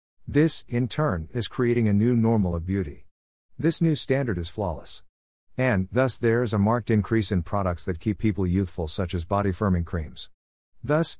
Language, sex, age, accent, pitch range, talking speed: English, male, 50-69, American, 90-115 Hz, 180 wpm